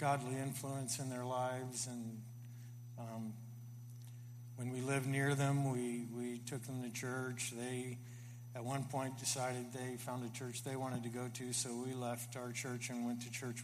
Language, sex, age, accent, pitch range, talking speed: English, male, 50-69, American, 120-125 Hz, 180 wpm